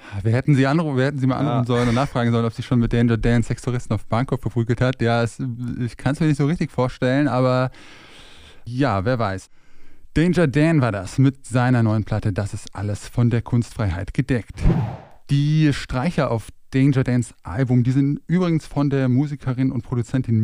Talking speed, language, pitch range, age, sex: 195 wpm, German, 115-135 Hz, 20-39, male